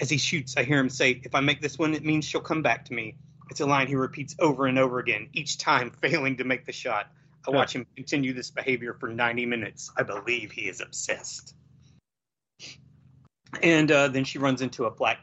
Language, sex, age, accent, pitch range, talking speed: English, male, 30-49, American, 130-150 Hz, 225 wpm